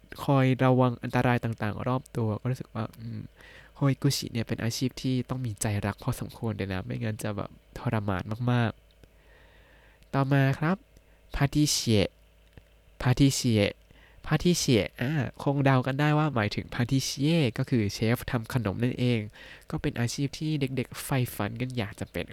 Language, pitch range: Thai, 110-135 Hz